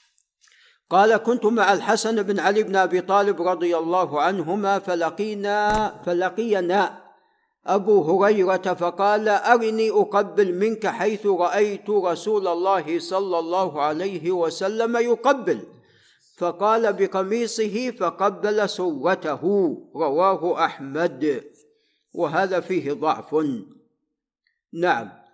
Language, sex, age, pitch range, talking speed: Arabic, male, 50-69, 175-220 Hz, 90 wpm